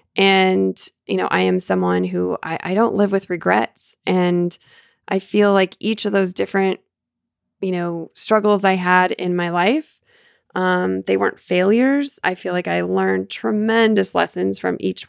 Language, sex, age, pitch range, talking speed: English, female, 20-39, 175-210 Hz, 165 wpm